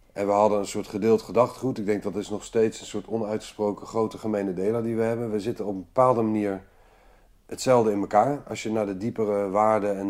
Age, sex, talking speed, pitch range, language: 40-59, male, 225 wpm, 100-120 Hz, Dutch